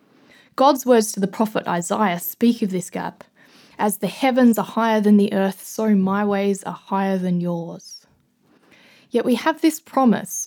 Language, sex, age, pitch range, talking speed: English, female, 20-39, 195-240 Hz, 170 wpm